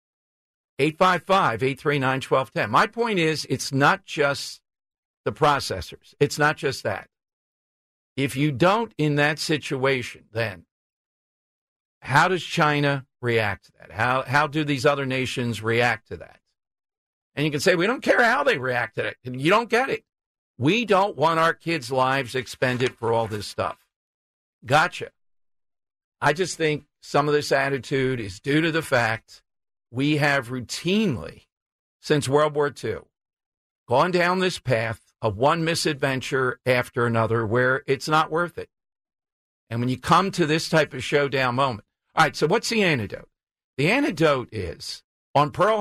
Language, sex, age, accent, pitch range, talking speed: English, male, 50-69, American, 130-165 Hz, 155 wpm